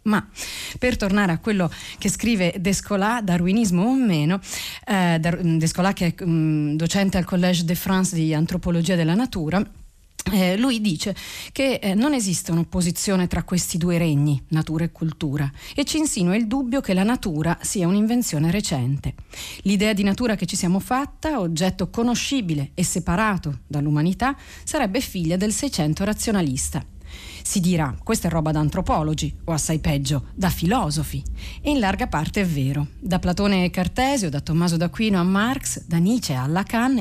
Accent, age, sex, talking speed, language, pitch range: native, 40-59, female, 160 wpm, Italian, 160-220 Hz